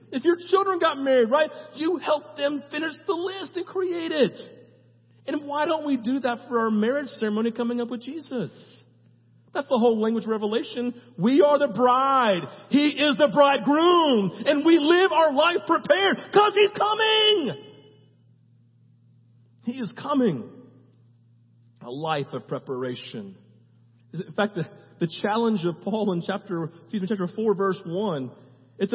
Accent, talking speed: American, 155 wpm